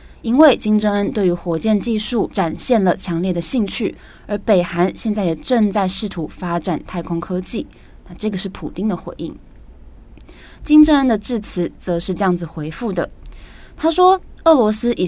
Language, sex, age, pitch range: Chinese, female, 20-39, 165-215 Hz